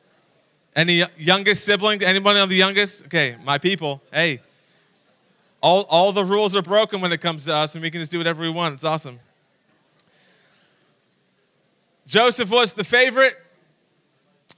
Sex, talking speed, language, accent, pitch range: male, 150 wpm, English, American, 180-225 Hz